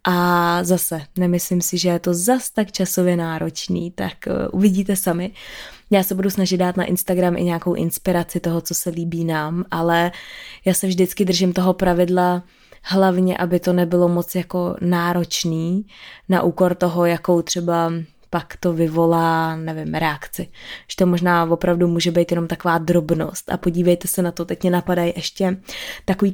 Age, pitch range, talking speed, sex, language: 20-39, 170-185 Hz, 165 wpm, female, Czech